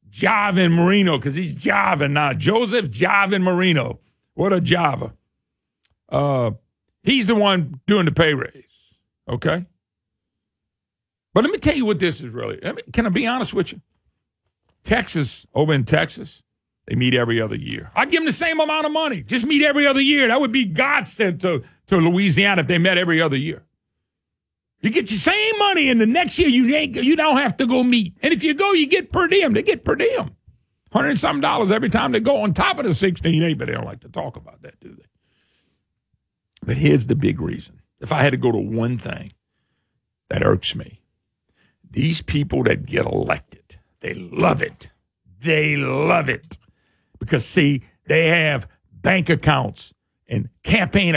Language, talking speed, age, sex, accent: English, 185 wpm, 50-69, male, American